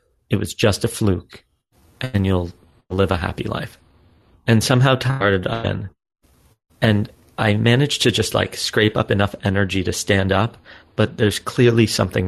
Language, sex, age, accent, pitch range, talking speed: English, male, 30-49, American, 90-110 Hz, 160 wpm